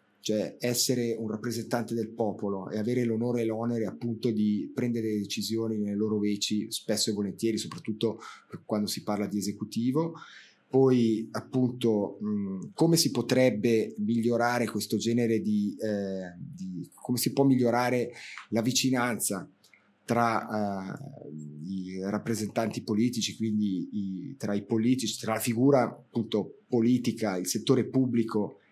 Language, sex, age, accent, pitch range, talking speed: Italian, male, 30-49, native, 110-125 Hz, 125 wpm